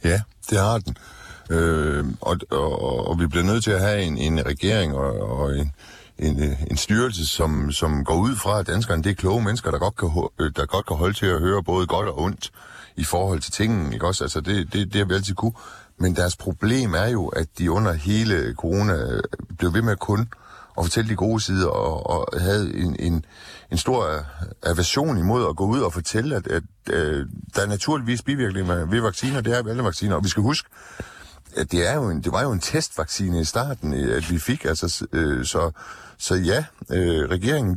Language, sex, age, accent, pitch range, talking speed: Danish, male, 60-79, native, 85-110 Hz, 210 wpm